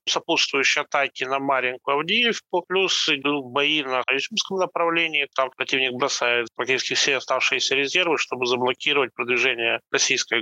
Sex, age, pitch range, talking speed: male, 20-39, 130-170 Hz, 120 wpm